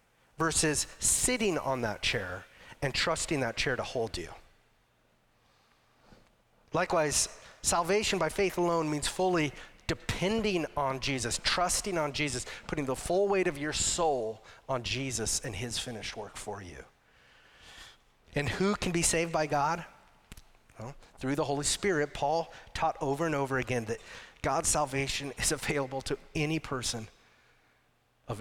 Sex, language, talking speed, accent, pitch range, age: male, English, 140 wpm, American, 130-170 Hz, 40-59